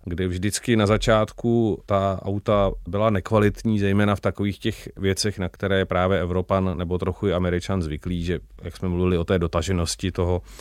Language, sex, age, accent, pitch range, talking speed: Czech, male, 30-49, native, 95-105 Hz, 165 wpm